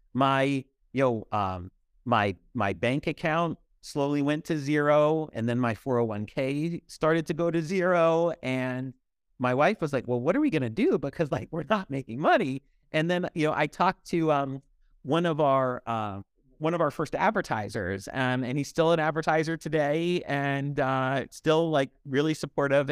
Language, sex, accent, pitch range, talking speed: English, male, American, 130-170 Hz, 180 wpm